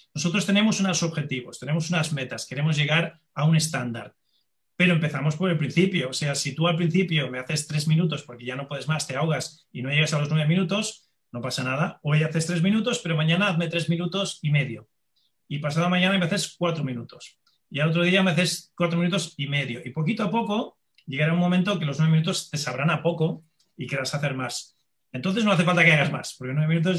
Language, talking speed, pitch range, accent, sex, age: Spanish, 225 wpm, 145-180 Hz, Spanish, male, 30-49